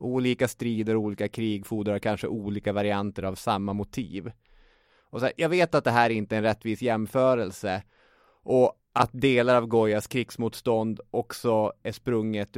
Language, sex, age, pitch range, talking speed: Swedish, male, 20-39, 110-130 Hz, 160 wpm